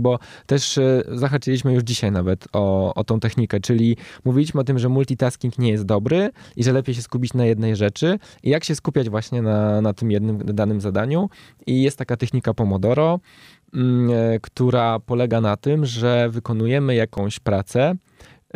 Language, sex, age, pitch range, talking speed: Polish, male, 20-39, 115-135 Hz, 165 wpm